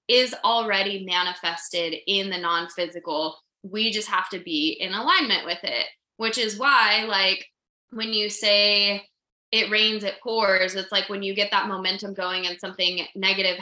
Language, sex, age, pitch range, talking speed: English, female, 20-39, 180-210 Hz, 165 wpm